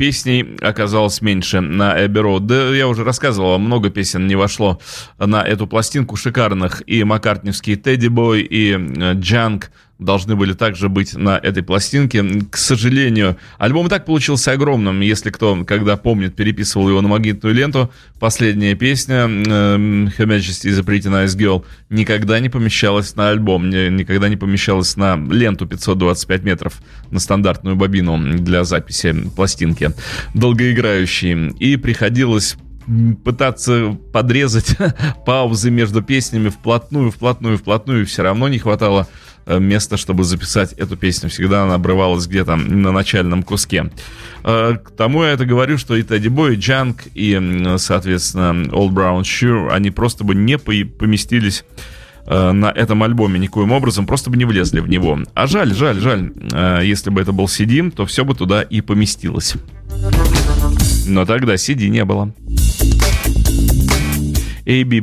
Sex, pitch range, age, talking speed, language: male, 95-115 Hz, 20-39, 140 wpm, Russian